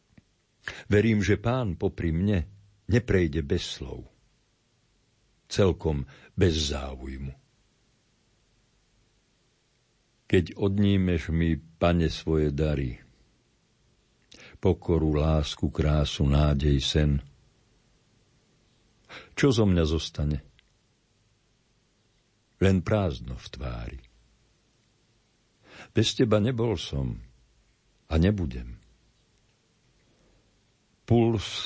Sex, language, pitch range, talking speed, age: male, Slovak, 80-110 Hz, 70 wpm, 60-79